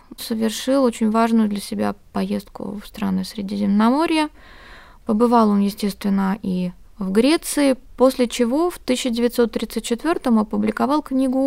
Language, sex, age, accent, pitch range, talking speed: Russian, female, 20-39, native, 205-245 Hz, 110 wpm